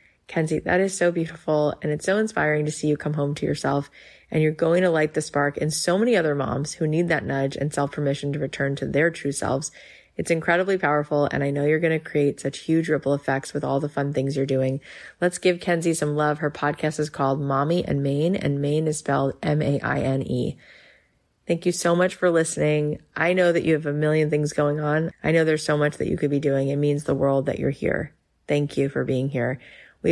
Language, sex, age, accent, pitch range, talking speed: English, female, 30-49, American, 145-170 Hz, 235 wpm